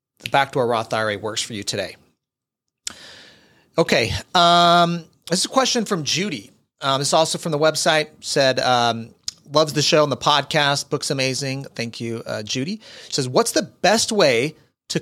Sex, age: male, 40-59